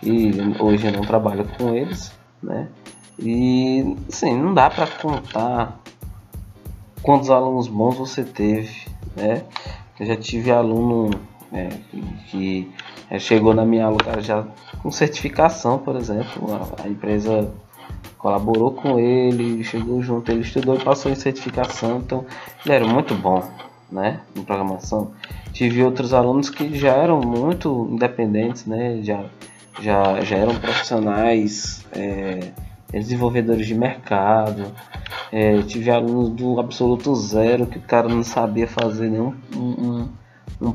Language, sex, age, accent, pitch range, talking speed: Portuguese, male, 20-39, Brazilian, 105-125 Hz, 125 wpm